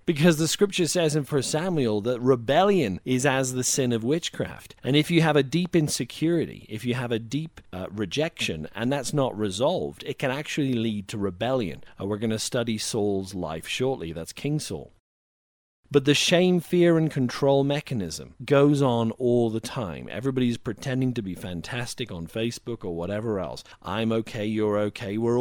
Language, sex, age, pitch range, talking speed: English, male, 40-59, 105-145 Hz, 180 wpm